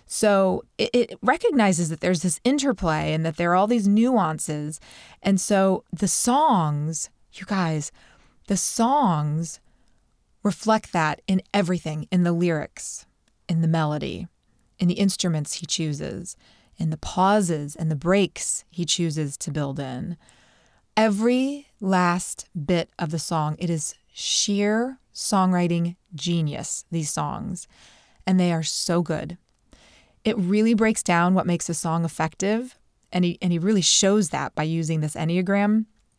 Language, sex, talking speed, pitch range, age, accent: English, female, 145 wpm, 165-200 Hz, 30-49, American